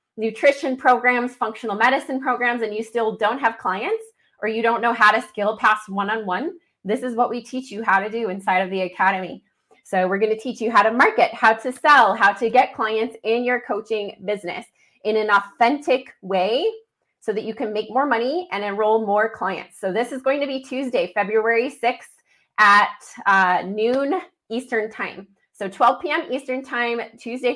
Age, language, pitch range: 20-39, English, 210-255 Hz